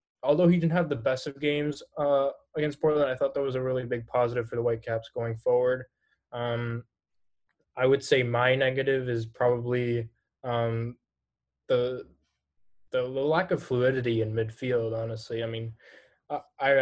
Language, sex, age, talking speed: English, male, 20-39, 155 wpm